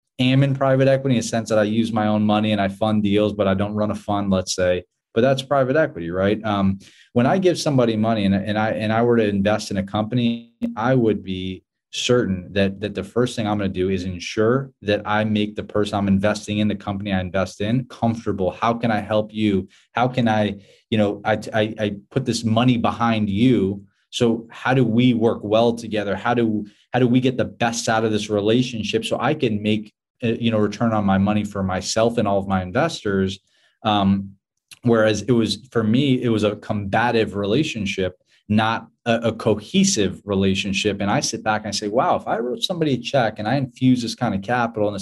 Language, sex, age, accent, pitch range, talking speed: English, male, 20-39, American, 100-120 Hz, 225 wpm